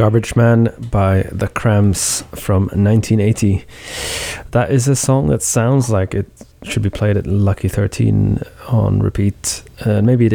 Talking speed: 150 wpm